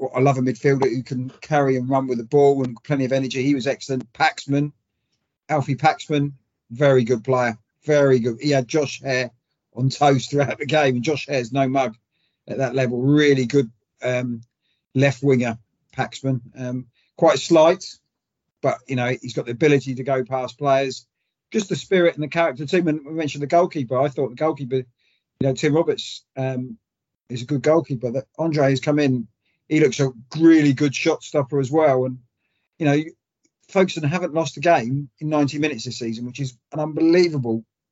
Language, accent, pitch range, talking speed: English, British, 125-150 Hz, 195 wpm